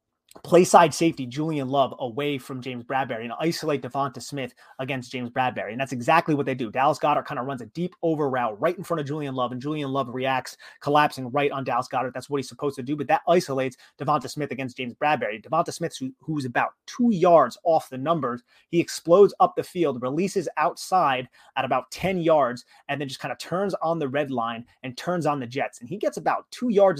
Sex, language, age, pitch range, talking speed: male, English, 30-49, 125-165 Hz, 225 wpm